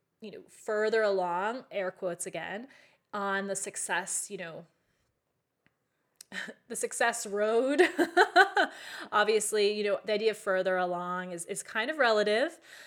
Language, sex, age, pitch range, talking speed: English, female, 20-39, 200-270 Hz, 130 wpm